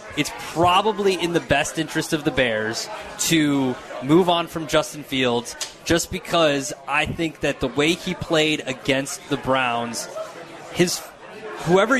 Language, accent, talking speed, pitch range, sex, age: English, American, 145 wpm, 140-175 Hz, male, 20-39